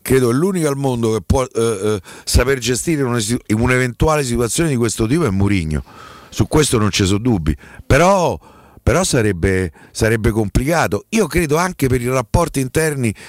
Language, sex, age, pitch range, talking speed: Italian, male, 50-69, 105-140 Hz, 165 wpm